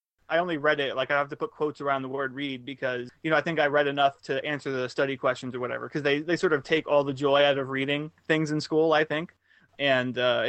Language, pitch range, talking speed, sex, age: English, 130-155 Hz, 275 wpm, male, 20-39